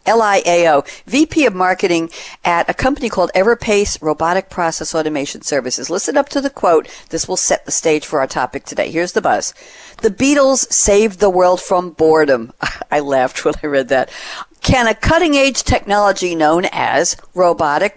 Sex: female